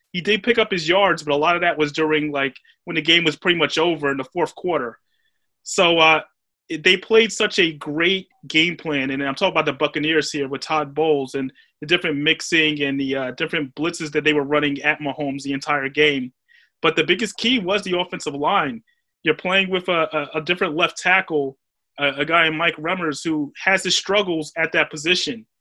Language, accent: English, American